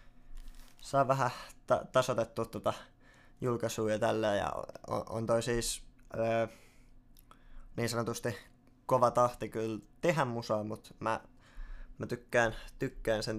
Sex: male